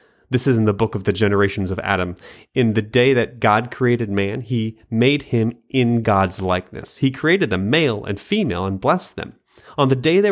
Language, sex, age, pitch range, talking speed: English, male, 30-49, 100-125 Hz, 210 wpm